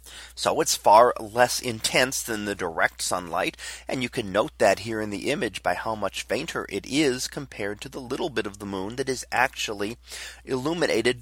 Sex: male